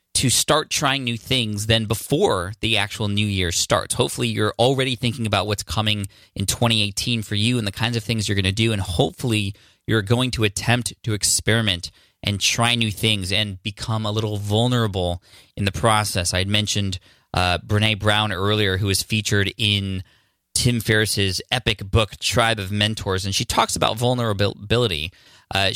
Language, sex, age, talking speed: English, male, 20-39, 175 wpm